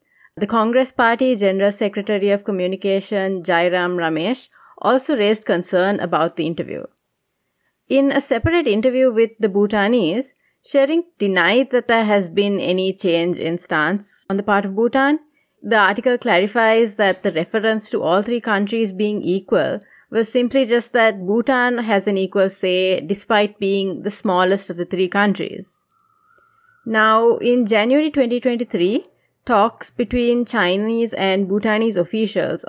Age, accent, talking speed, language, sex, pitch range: 30-49, Indian, 140 wpm, English, female, 190-240 Hz